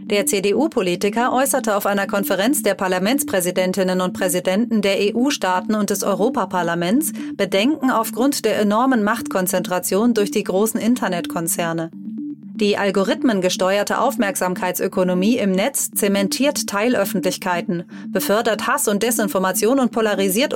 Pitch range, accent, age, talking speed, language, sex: 190-235 Hz, German, 30-49, 110 wpm, German, female